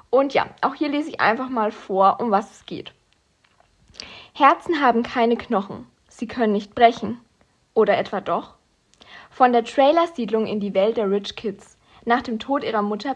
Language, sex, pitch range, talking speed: German, female, 205-245 Hz, 175 wpm